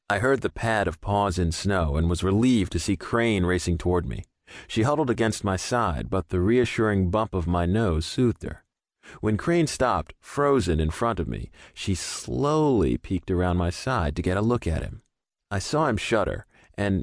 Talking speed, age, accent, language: 195 wpm, 40-59, American, English